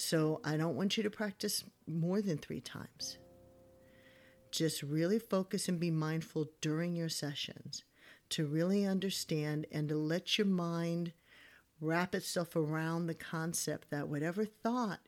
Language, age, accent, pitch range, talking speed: English, 50-69, American, 150-175 Hz, 145 wpm